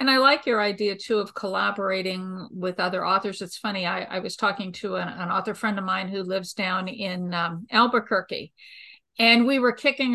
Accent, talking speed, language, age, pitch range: American, 200 wpm, English, 50-69, 205-265 Hz